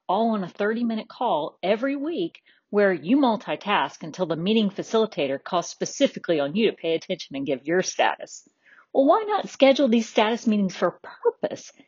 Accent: American